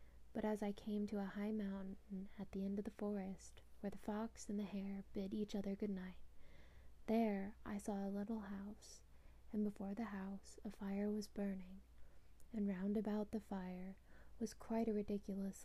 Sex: female